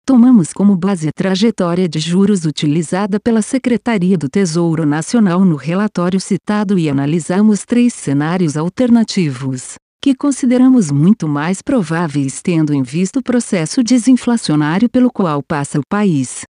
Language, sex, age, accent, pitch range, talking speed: Portuguese, female, 50-69, Brazilian, 170-230 Hz, 135 wpm